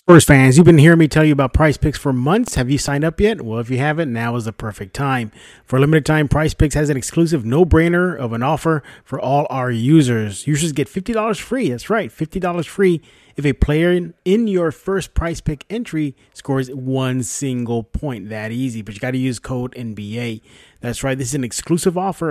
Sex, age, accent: male, 30-49, American